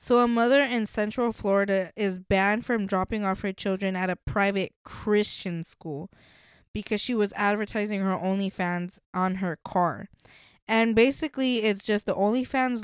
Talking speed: 155 wpm